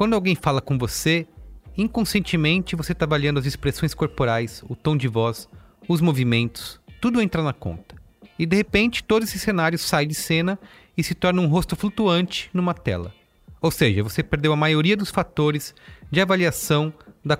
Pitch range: 130-180 Hz